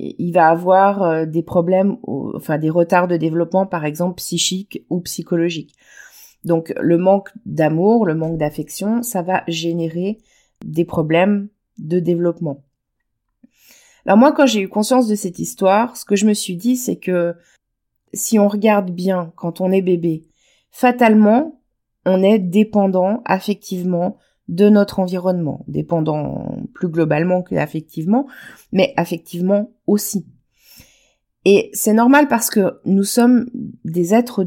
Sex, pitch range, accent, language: female, 175-215 Hz, French, French